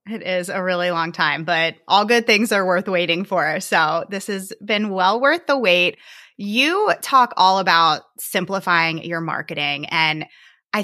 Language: English